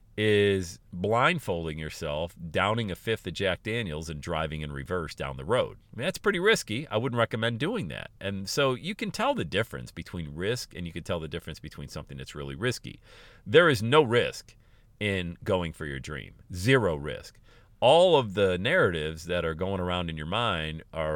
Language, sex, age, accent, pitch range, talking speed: English, male, 40-59, American, 75-110 Hz, 190 wpm